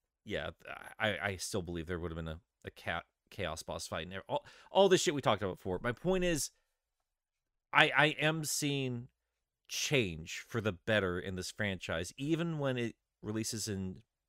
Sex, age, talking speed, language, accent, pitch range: male, 30-49, 185 wpm, English, American, 110-145 Hz